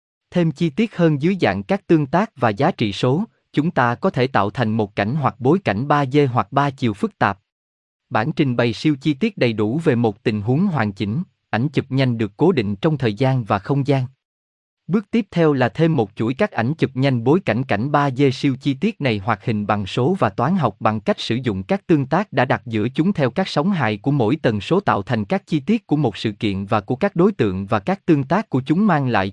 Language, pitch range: Vietnamese, 110-160 Hz